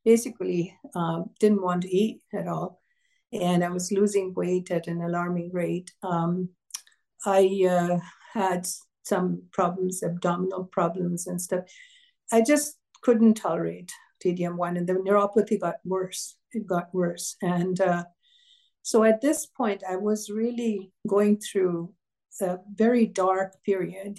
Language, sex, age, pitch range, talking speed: English, female, 60-79, 180-220 Hz, 135 wpm